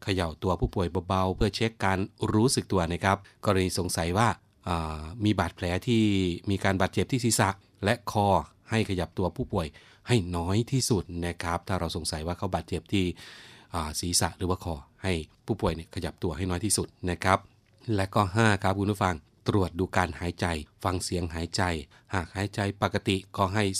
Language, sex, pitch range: Thai, male, 85-105 Hz